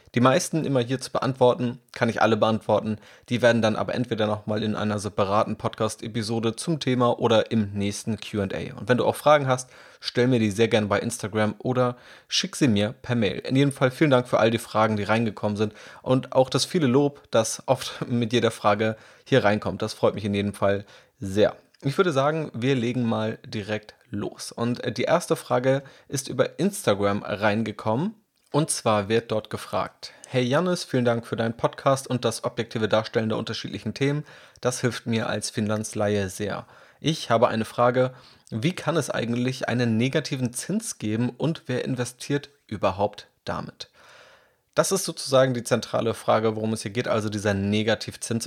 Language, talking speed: German, 180 wpm